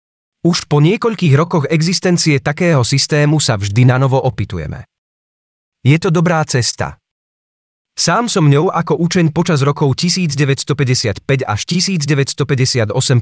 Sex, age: male, 30-49